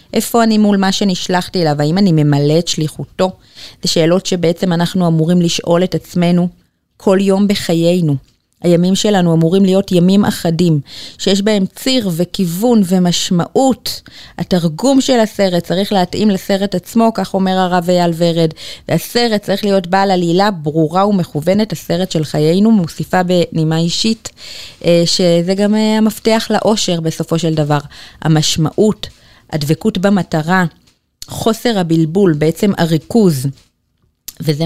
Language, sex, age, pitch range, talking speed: Hebrew, female, 30-49, 160-195 Hz, 125 wpm